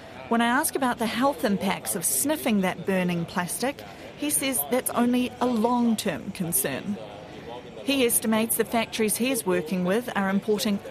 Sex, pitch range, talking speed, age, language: female, 190-235 Hz, 160 wpm, 40-59, English